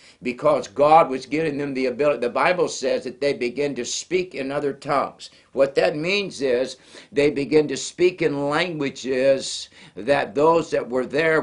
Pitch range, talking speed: 130-160 Hz, 175 wpm